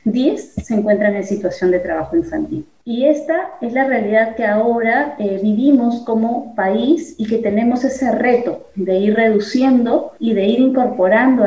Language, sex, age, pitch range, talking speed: Spanish, female, 30-49, 205-255 Hz, 160 wpm